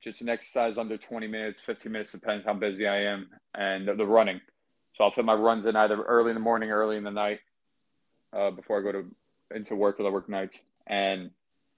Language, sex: English, male